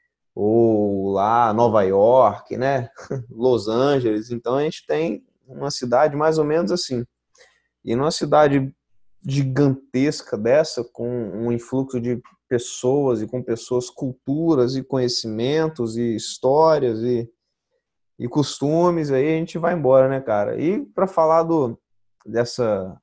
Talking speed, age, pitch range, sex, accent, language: 130 wpm, 20-39, 110-140 Hz, male, Brazilian, Portuguese